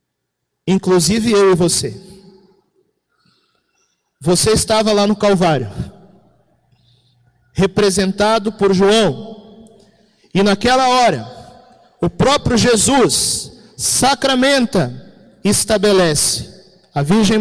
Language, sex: Portuguese, male